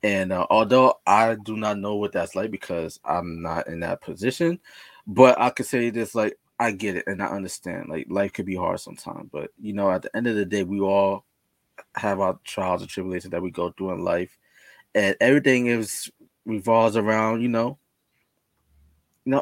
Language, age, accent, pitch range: English, 20-39, American, 95-125 Hz